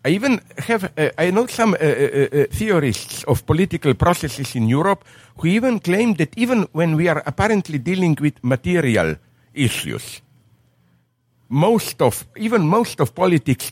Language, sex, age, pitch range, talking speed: English, male, 60-79, 125-180 Hz, 155 wpm